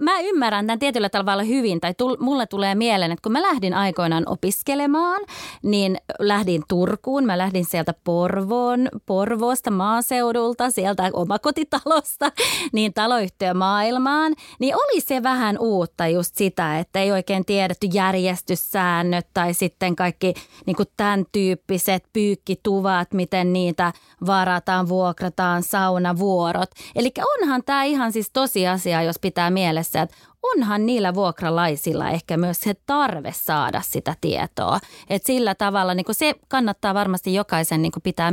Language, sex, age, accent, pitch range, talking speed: Finnish, female, 20-39, native, 175-230 Hz, 130 wpm